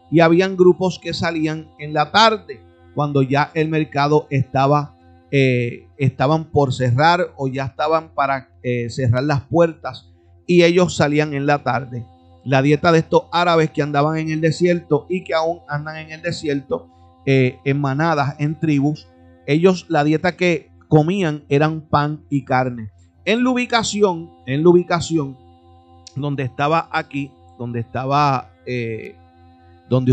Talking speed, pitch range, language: 150 wpm, 100-155 Hz, Spanish